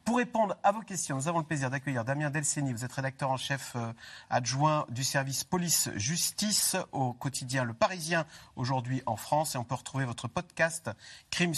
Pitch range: 125-165 Hz